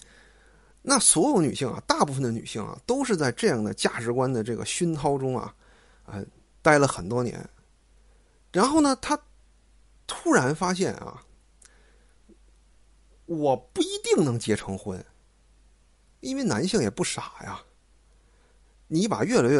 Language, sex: Chinese, male